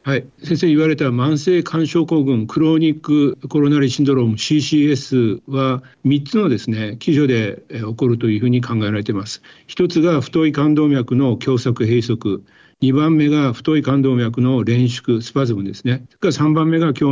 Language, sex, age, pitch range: Japanese, male, 50-69, 120-155 Hz